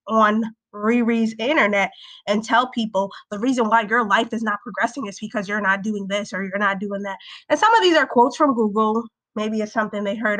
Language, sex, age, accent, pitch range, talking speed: English, female, 20-39, American, 205-250 Hz, 220 wpm